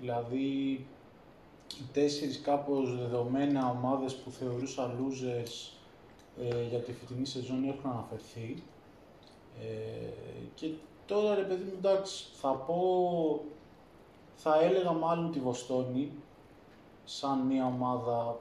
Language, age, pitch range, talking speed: Greek, 20-39, 125-155 Hz, 105 wpm